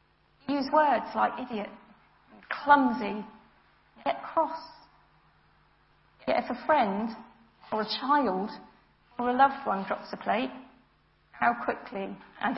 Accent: British